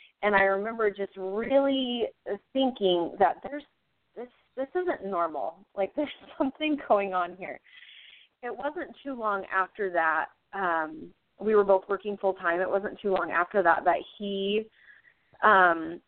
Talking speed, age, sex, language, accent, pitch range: 145 wpm, 30-49, female, English, American, 185-235 Hz